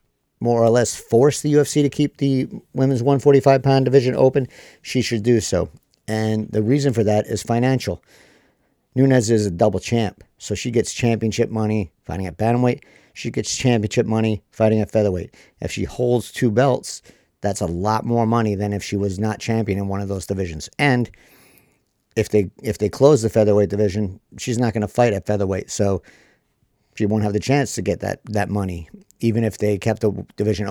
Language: English